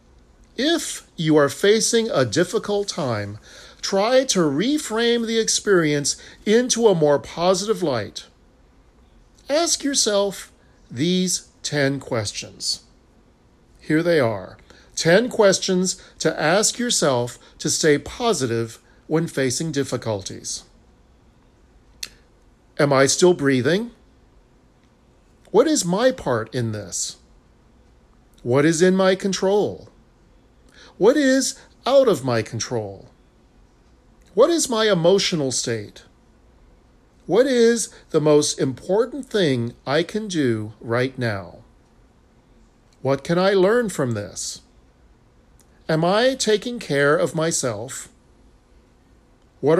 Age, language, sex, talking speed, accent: 40-59, English, male, 105 wpm, American